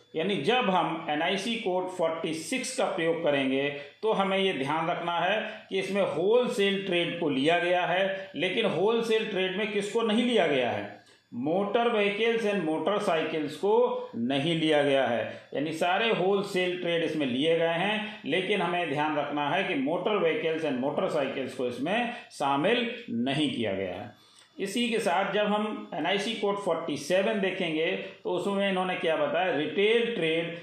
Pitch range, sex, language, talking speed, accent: 160-210 Hz, male, Hindi, 160 wpm, native